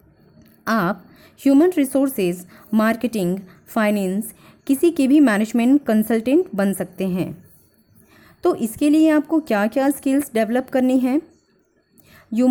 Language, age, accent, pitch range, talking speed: Hindi, 20-39, native, 210-290 Hz, 115 wpm